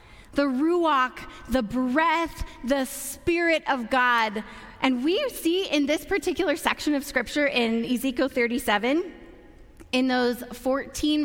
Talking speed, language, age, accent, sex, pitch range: 125 wpm, English, 30-49, American, female, 245-300 Hz